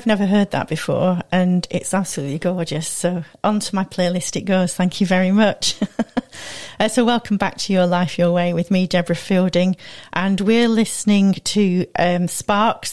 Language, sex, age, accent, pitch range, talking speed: English, female, 40-59, British, 180-215 Hz, 170 wpm